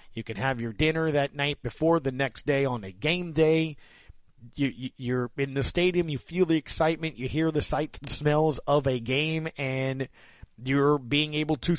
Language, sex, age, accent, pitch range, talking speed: English, male, 40-59, American, 125-155 Hz, 190 wpm